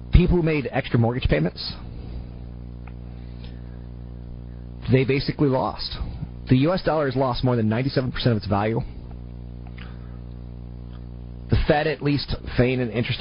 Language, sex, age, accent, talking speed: English, male, 30-49, American, 125 wpm